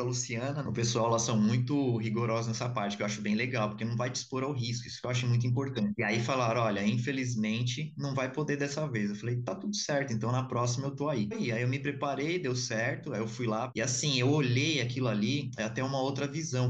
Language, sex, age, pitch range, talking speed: Portuguese, male, 20-39, 110-145 Hz, 250 wpm